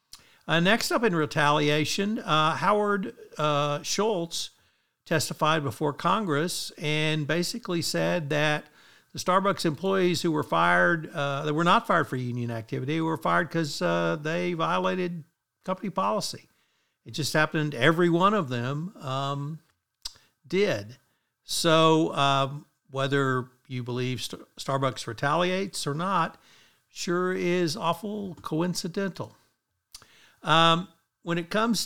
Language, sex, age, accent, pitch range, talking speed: English, male, 60-79, American, 135-175 Hz, 120 wpm